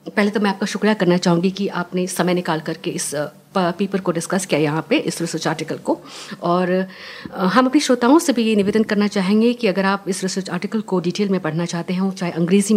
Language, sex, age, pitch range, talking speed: English, female, 50-69, 170-215 Hz, 220 wpm